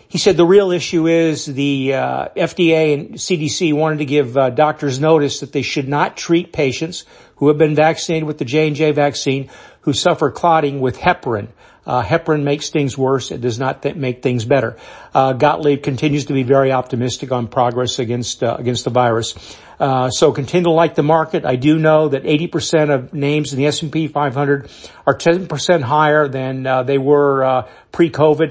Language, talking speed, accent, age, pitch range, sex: English, 185 wpm, American, 50-69, 135-155 Hz, male